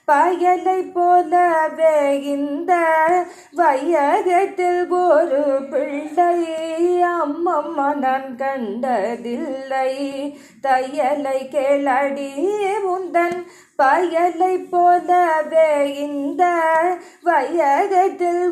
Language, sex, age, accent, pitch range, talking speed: Tamil, female, 20-39, native, 270-350 Hz, 55 wpm